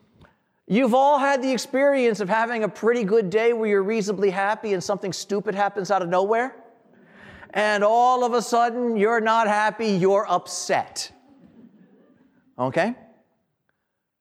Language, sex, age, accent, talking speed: English, male, 40-59, American, 140 wpm